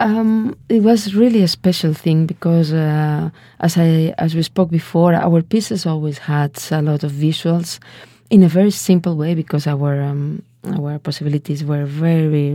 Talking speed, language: 165 wpm, English